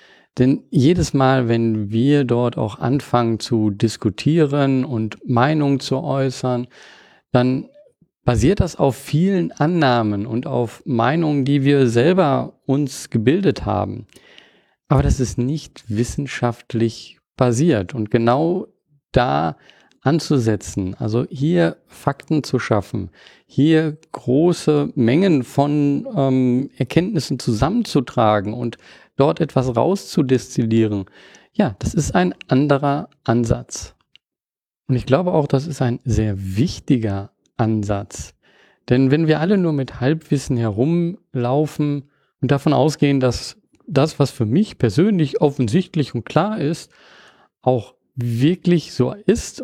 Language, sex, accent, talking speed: German, male, German, 115 wpm